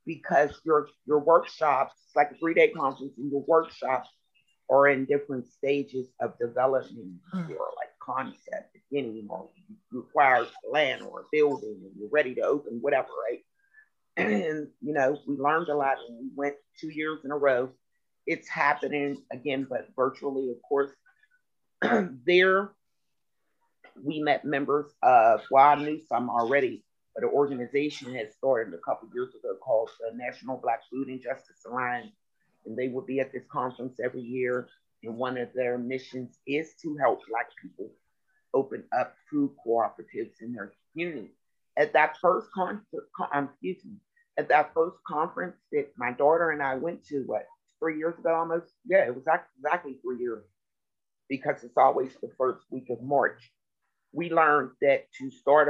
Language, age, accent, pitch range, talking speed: English, 30-49, American, 130-170 Hz, 160 wpm